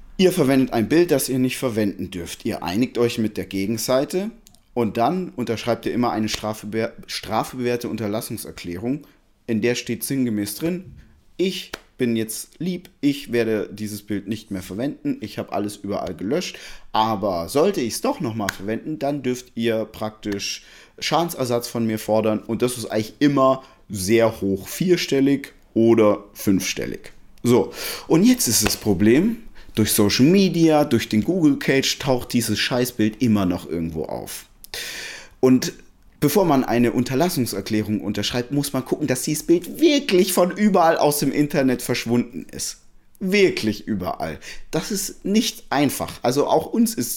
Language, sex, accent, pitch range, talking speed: German, male, German, 110-150 Hz, 150 wpm